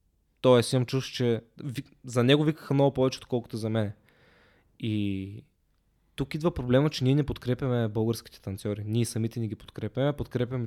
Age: 20-39